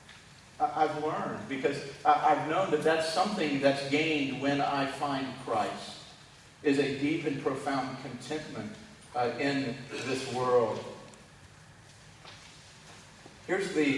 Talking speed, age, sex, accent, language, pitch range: 105 wpm, 50-69, male, American, English, 125-155 Hz